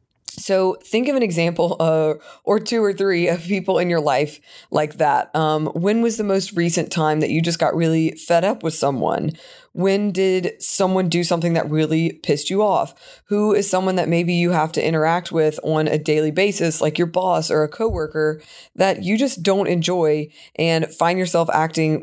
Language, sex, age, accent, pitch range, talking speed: English, female, 20-39, American, 155-190 Hz, 195 wpm